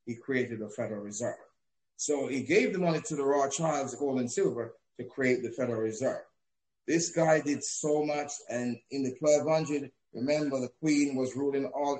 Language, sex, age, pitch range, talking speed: Russian, male, 30-49, 125-150 Hz, 185 wpm